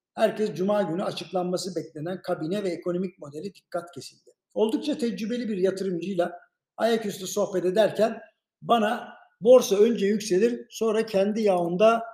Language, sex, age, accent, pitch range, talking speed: Turkish, male, 60-79, native, 175-225 Hz, 125 wpm